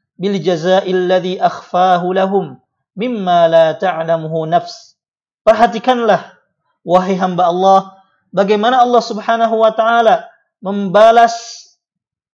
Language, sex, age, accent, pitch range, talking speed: Indonesian, male, 50-69, native, 180-220 Hz, 85 wpm